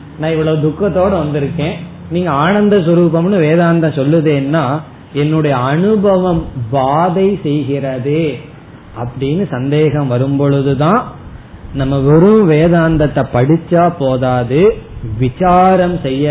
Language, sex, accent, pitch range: Tamil, male, native, 135-185 Hz